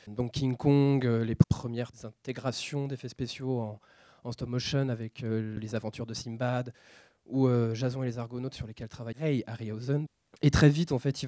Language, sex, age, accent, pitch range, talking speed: French, male, 20-39, French, 115-135 Hz, 185 wpm